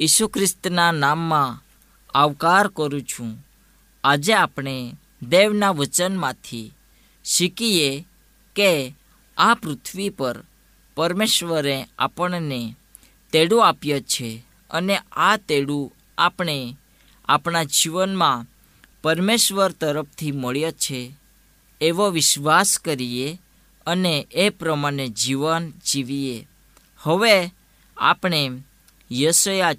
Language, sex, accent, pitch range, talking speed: Gujarati, female, native, 135-180 Hz, 75 wpm